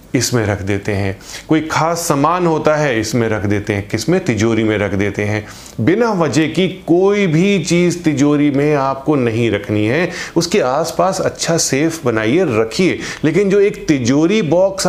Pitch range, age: 110-165 Hz, 30-49